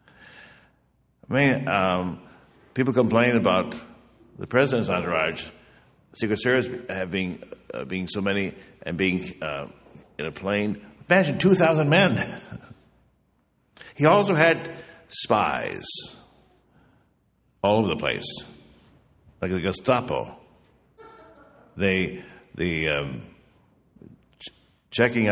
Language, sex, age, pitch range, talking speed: English, male, 60-79, 95-160 Hz, 95 wpm